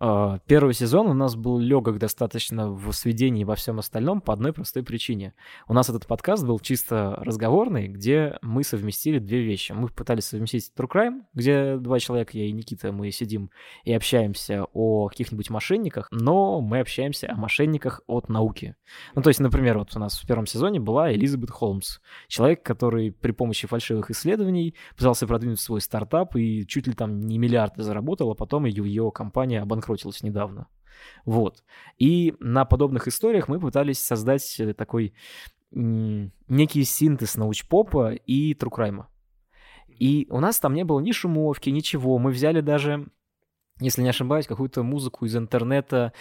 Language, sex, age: Russian, male, 20-39